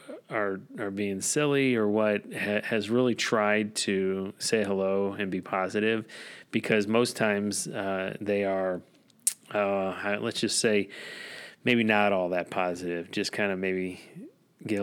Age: 30-49